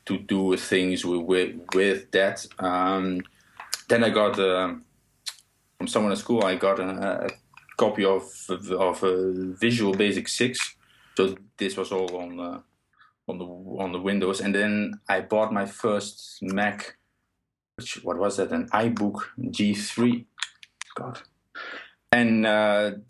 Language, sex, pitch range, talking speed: English, male, 95-115 Hz, 145 wpm